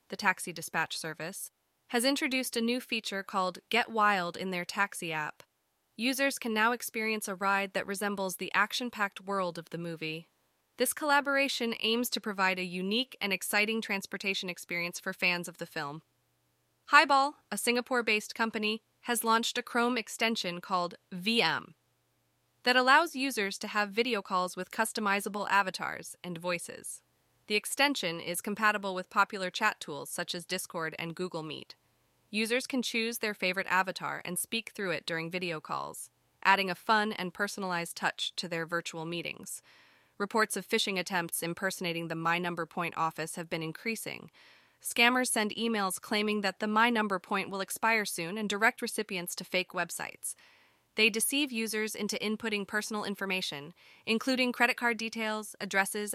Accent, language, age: American, English, 20-39